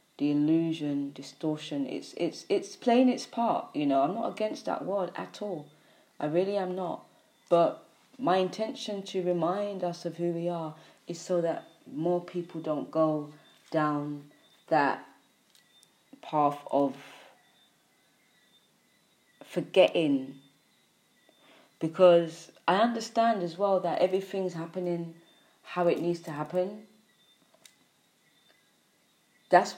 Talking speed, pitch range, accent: 115 wpm, 155-185 Hz, British